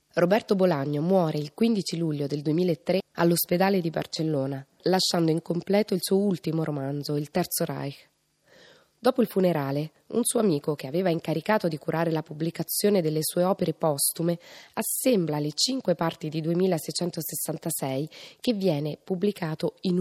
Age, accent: 20-39, native